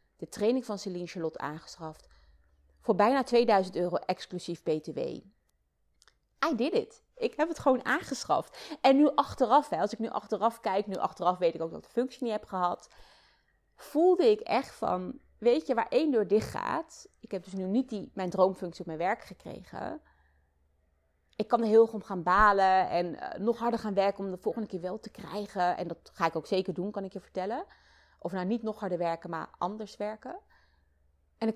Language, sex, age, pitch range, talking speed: Dutch, female, 30-49, 170-230 Hz, 205 wpm